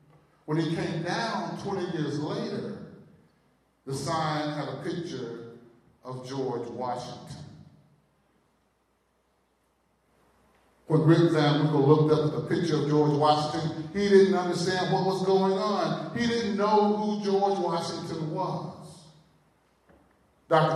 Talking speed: 120 wpm